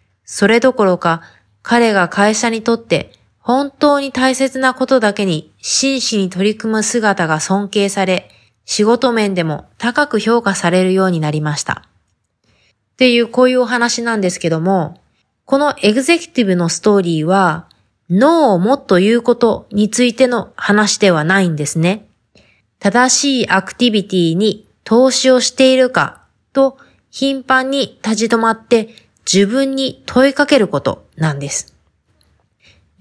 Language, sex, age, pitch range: Japanese, female, 20-39, 185-255 Hz